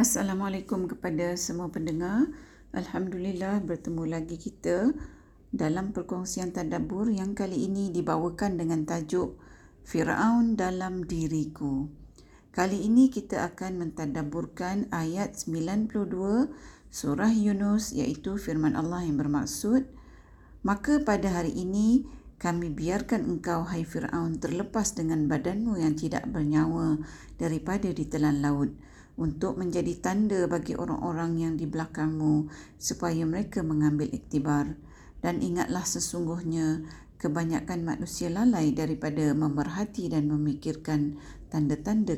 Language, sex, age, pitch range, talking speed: Malay, female, 50-69, 155-205 Hz, 105 wpm